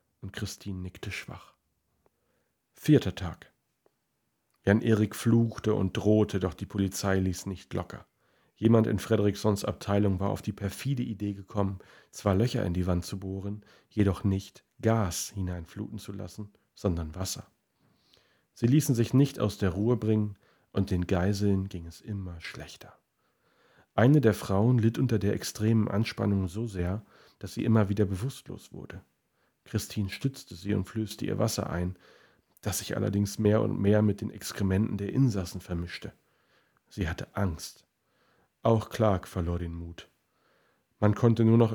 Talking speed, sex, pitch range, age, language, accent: 150 wpm, male, 95-110 Hz, 40-59, German, German